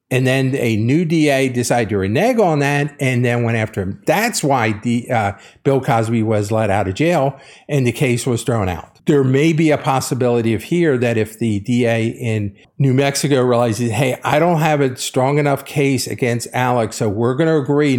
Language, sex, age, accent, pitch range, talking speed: English, male, 50-69, American, 120-150 Hz, 205 wpm